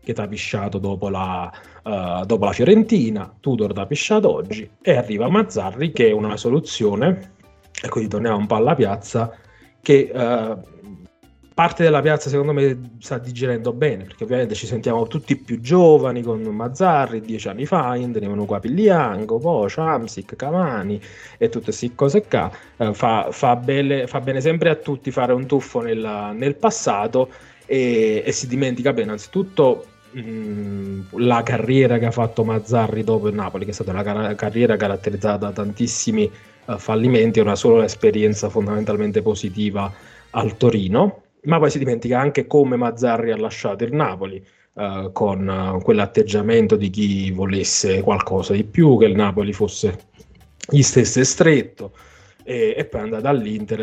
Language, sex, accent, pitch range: Italian, male, native, 105-140 Hz